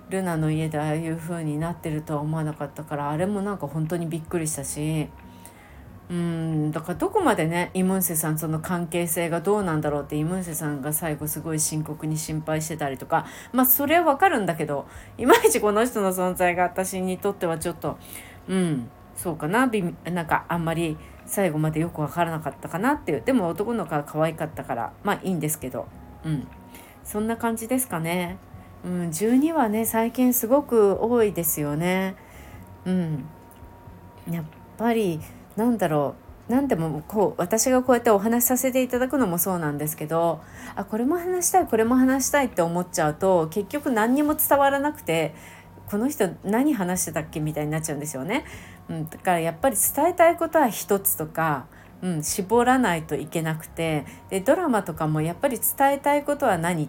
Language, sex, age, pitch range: Japanese, female, 30-49, 155-225 Hz